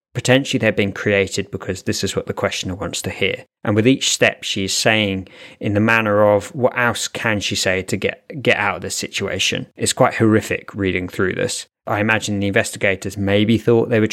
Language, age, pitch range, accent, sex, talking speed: English, 20-39, 100-110 Hz, British, male, 210 wpm